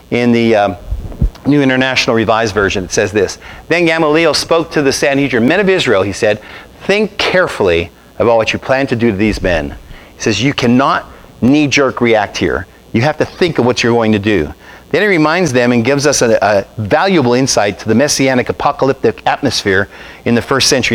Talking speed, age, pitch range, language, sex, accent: 200 wpm, 50-69, 120-165 Hz, English, male, American